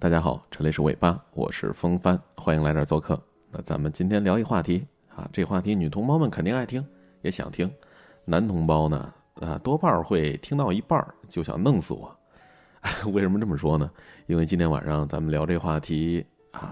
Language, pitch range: Chinese, 80-115 Hz